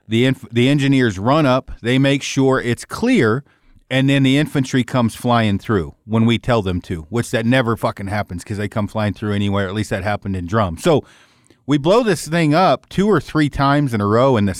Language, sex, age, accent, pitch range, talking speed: English, male, 40-59, American, 105-135 Hz, 220 wpm